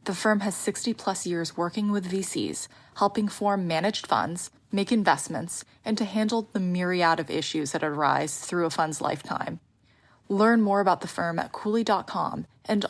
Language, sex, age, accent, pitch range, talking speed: English, female, 20-39, American, 175-210 Hz, 165 wpm